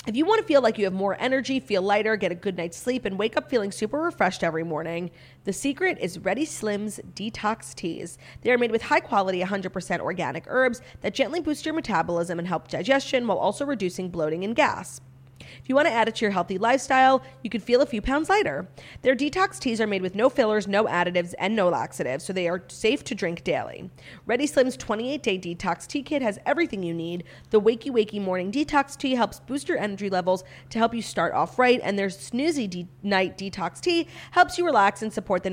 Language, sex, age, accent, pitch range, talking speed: English, female, 30-49, American, 180-260 Hz, 220 wpm